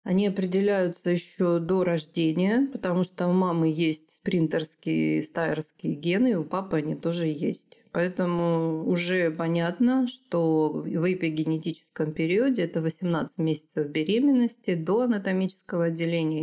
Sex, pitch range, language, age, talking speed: female, 160-190 Hz, Russian, 30-49, 120 wpm